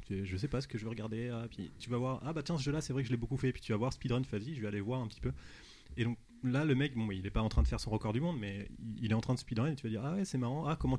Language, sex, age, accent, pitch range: French, male, 30-49, French, 105-125 Hz